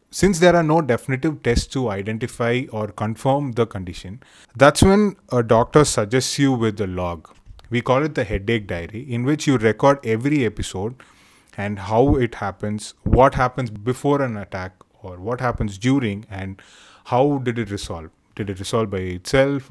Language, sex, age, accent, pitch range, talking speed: English, male, 30-49, Indian, 100-125 Hz, 170 wpm